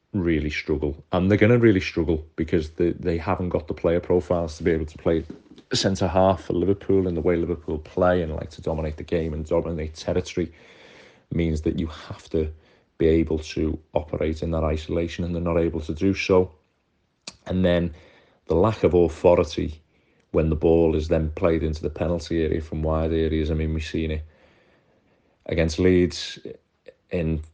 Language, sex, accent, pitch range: English, male, British, 80-85 Hz